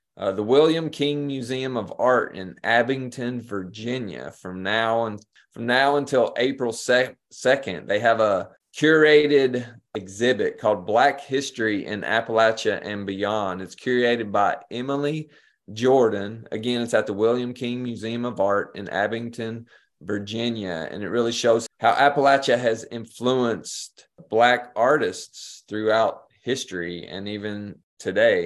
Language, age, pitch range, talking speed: English, 30-49, 105-125 Hz, 135 wpm